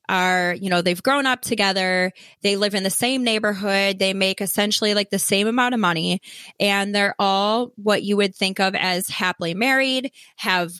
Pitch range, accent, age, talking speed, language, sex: 185-235 Hz, American, 20-39, 190 wpm, English, female